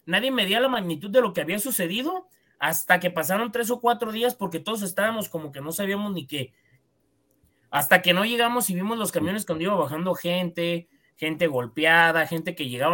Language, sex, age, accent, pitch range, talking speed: Spanish, male, 30-49, Mexican, 160-220 Hz, 195 wpm